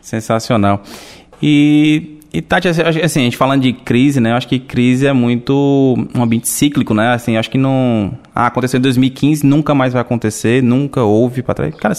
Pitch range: 120-155 Hz